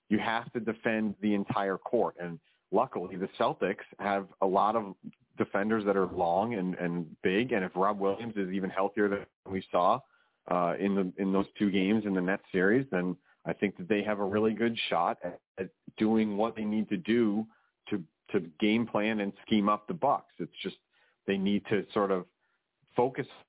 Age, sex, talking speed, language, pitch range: 40-59, male, 200 wpm, English, 95-110 Hz